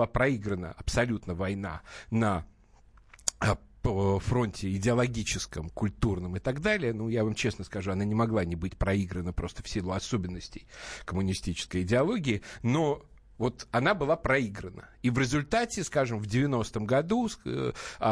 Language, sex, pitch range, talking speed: Russian, male, 95-130 Hz, 130 wpm